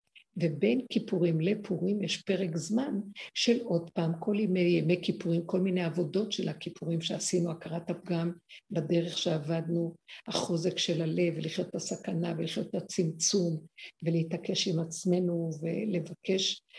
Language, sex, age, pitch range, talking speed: Hebrew, female, 50-69, 165-205 Hz, 130 wpm